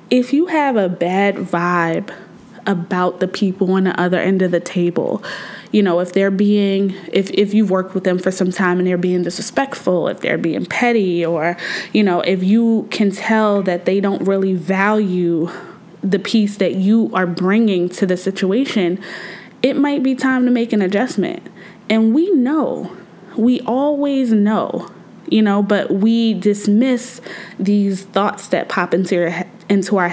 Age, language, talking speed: 20-39, English, 175 wpm